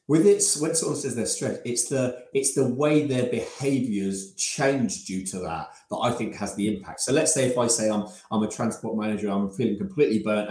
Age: 30-49